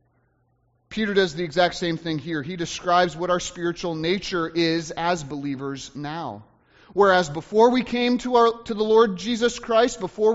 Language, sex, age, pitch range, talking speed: English, male, 30-49, 170-230 Hz, 170 wpm